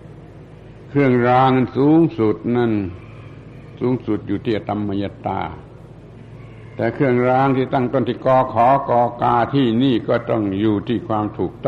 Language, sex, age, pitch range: Thai, male, 60-79, 110-130 Hz